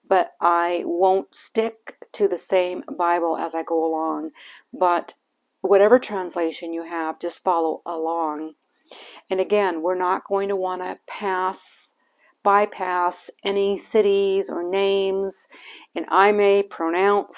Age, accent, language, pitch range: 50-69, American, English, 170-200 Hz